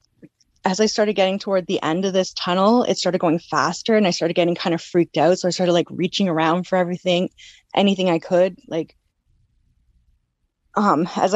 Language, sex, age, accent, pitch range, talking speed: English, female, 20-39, American, 165-195 Hz, 190 wpm